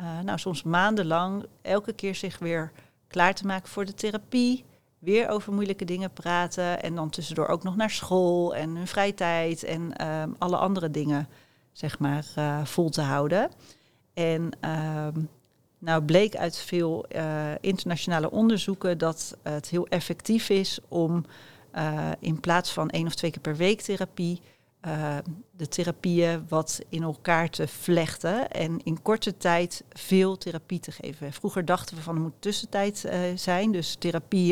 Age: 40-59